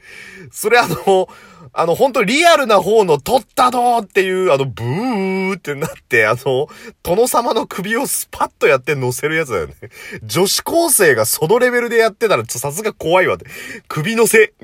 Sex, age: male, 30-49